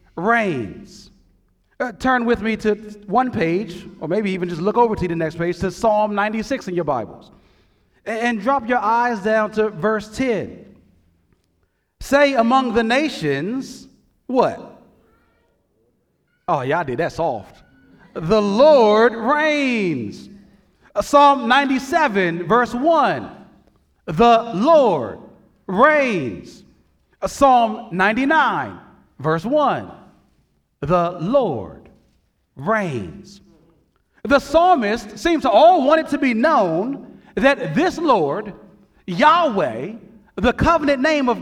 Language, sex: English, male